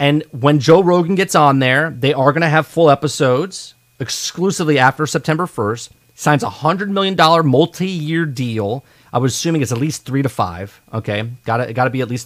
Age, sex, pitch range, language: 30-49, male, 125-165 Hz, English